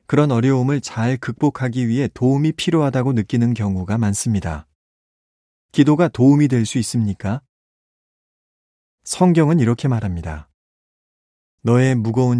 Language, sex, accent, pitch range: Korean, male, native, 90-135 Hz